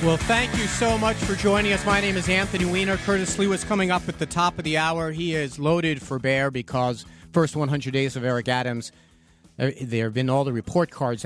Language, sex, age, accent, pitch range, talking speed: English, male, 40-59, American, 115-150 Hz, 230 wpm